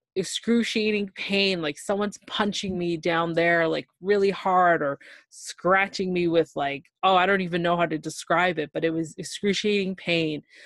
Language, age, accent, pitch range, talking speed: English, 20-39, American, 170-205 Hz, 170 wpm